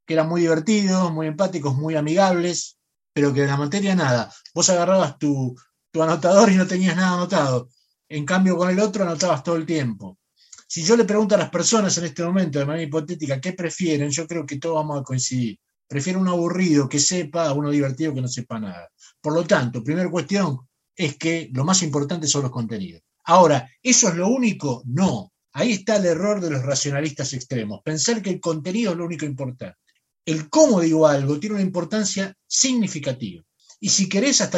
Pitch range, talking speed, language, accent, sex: 140-190 Hz, 200 wpm, Spanish, Argentinian, male